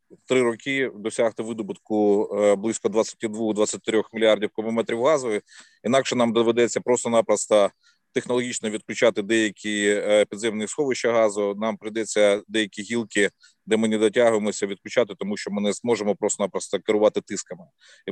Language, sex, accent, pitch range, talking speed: Ukrainian, male, native, 105-115 Hz, 125 wpm